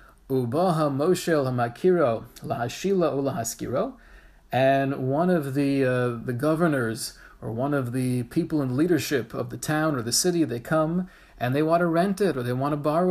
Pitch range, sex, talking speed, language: 135-180 Hz, male, 150 wpm, English